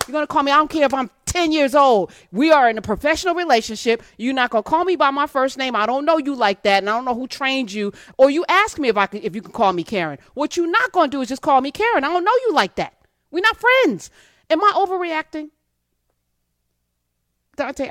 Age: 40-59